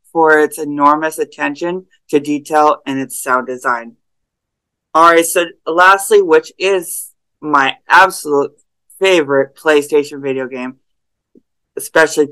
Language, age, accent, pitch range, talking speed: English, 20-39, American, 140-180 Hz, 105 wpm